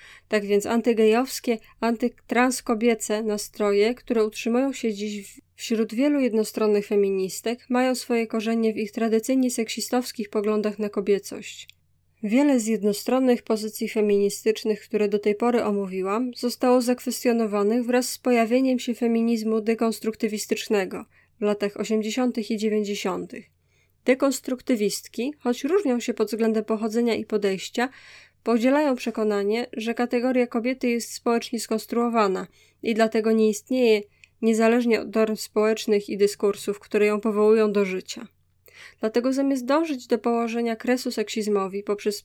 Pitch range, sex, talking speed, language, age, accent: 210-245 Hz, female, 120 wpm, English, 20-39, Polish